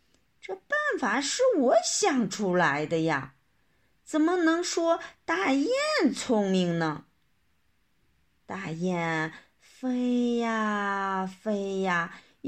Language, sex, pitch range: Chinese, female, 180-280 Hz